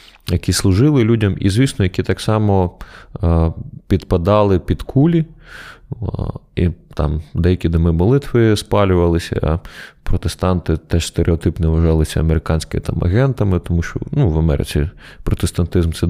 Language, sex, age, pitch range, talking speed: Ukrainian, male, 20-39, 85-105 Hz, 120 wpm